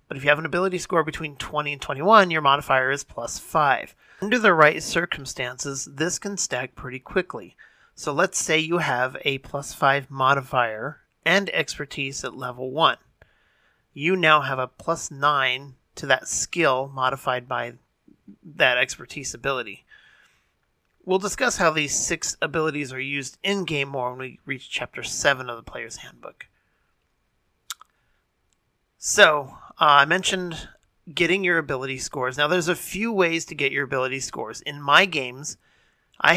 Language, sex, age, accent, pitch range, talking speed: English, male, 40-59, American, 135-170 Hz, 155 wpm